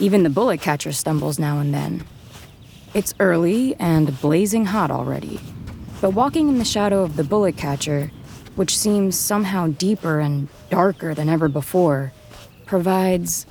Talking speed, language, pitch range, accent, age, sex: 145 wpm, English, 150-190 Hz, American, 20-39, female